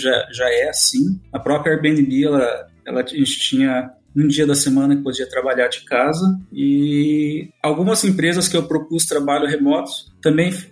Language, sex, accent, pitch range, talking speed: Portuguese, male, Brazilian, 135-170 Hz, 160 wpm